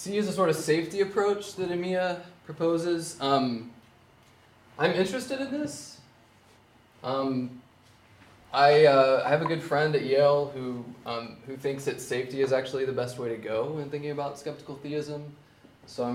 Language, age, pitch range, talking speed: English, 20-39, 115-150 Hz, 165 wpm